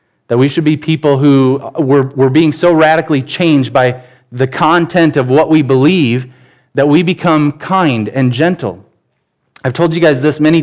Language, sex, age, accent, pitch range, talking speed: English, male, 30-49, American, 130-165 Hz, 175 wpm